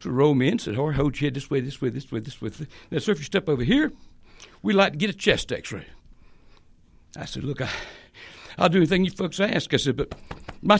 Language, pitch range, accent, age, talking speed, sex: English, 145-220 Hz, American, 60-79, 255 wpm, male